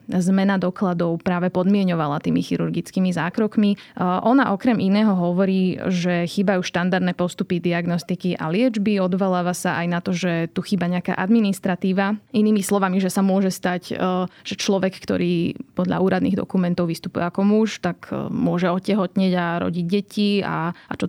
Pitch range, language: 180-205 Hz, Slovak